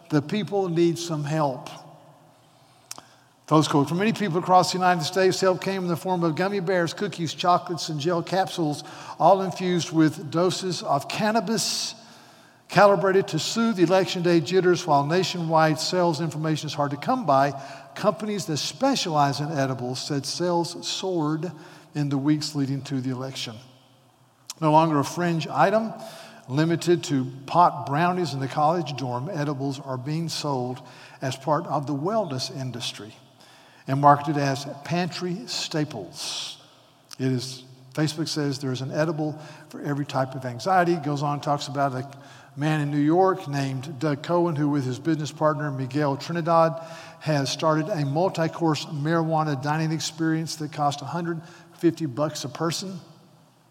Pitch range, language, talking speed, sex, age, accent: 140-175 Hz, English, 155 wpm, male, 60-79, American